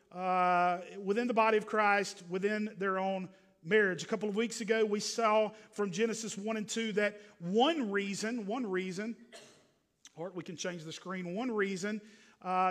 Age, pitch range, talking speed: 50-69, 175-220 Hz, 170 wpm